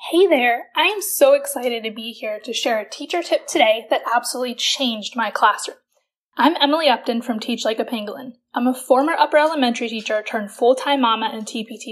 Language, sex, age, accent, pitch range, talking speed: English, female, 10-29, American, 225-270 Hz, 195 wpm